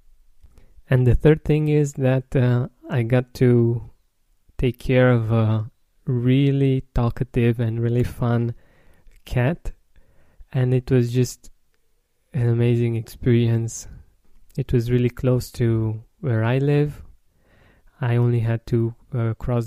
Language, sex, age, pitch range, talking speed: English, male, 20-39, 115-130 Hz, 125 wpm